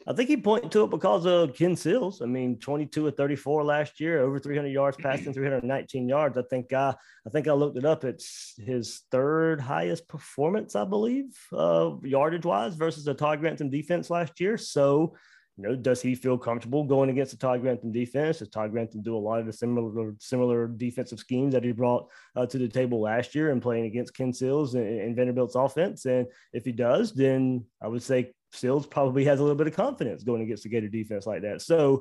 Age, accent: 30-49, American